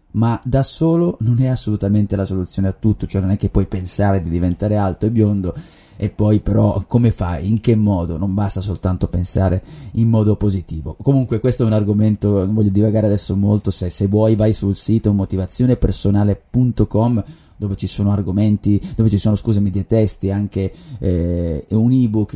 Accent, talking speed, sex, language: native, 180 wpm, male, Italian